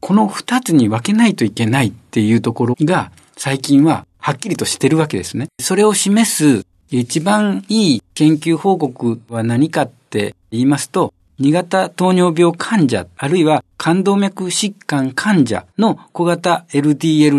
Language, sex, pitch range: Japanese, male, 125-180 Hz